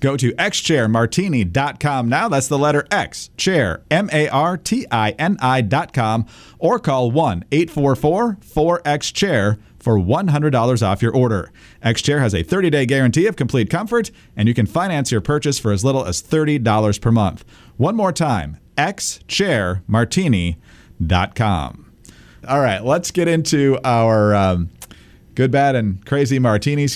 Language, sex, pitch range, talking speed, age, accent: English, male, 105-145 Hz, 120 wpm, 40-59, American